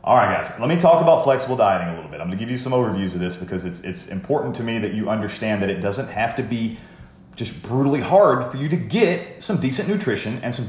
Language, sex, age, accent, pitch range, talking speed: English, male, 30-49, American, 105-150 Hz, 265 wpm